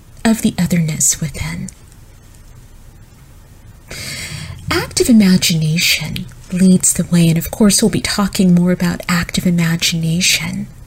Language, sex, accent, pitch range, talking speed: English, female, American, 170-220 Hz, 105 wpm